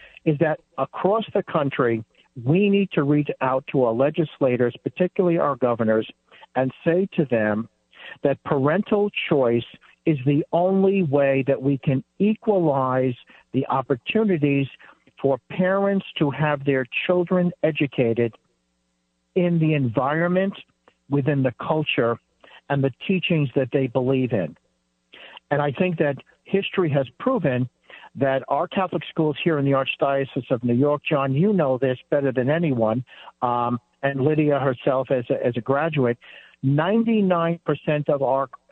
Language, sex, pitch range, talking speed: English, male, 130-165 Hz, 140 wpm